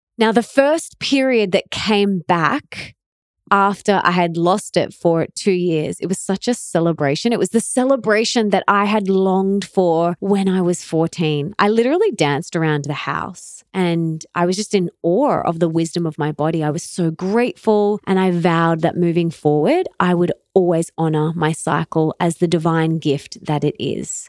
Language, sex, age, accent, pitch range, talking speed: English, female, 20-39, Australian, 165-220 Hz, 185 wpm